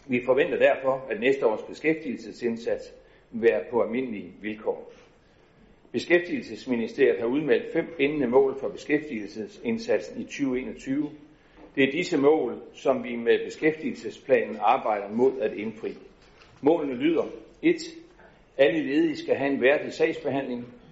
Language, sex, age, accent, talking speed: Danish, male, 60-79, native, 125 wpm